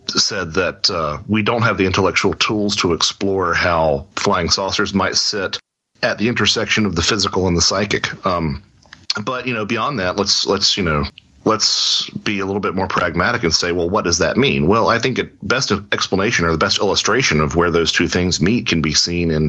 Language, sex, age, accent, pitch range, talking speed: English, male, 40-59, American, 85-110 Hz, 210 wpm